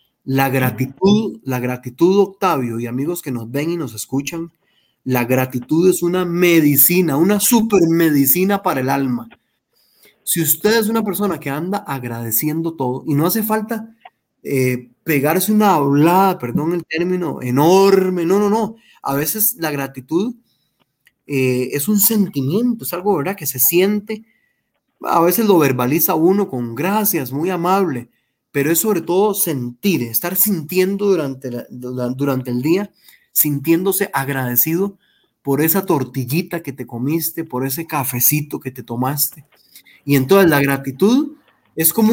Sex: male